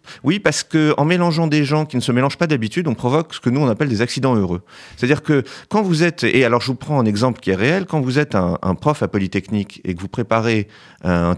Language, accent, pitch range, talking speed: French, French, 95-130 Hz, 265 wpm